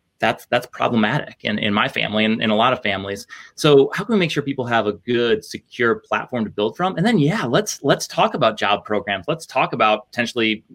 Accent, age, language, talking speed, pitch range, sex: American, 20-39, English, 230 wpm, 105-130 Hz, male